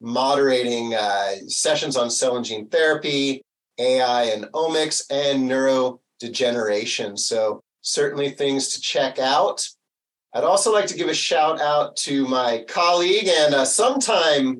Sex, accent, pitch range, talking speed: male, American, 125-155 Hz, 135 wpm